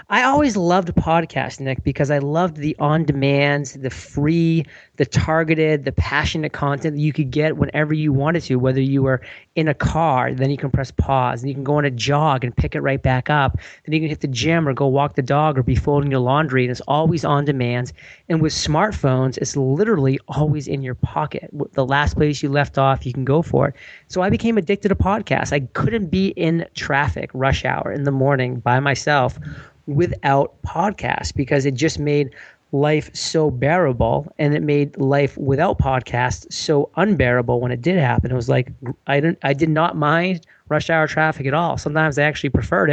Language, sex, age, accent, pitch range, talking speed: English, male, 30-49, American, 135-155 Hz, 205 wpm